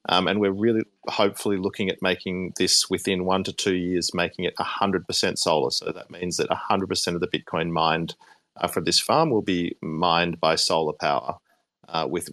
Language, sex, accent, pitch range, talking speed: English, male, Australian, 90-105 Hz, 190 wpm